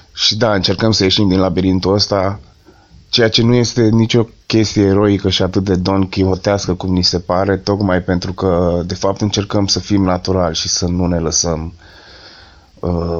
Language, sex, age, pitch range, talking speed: Romanian, male, 20-39, 85-100 Hz, 175 wpm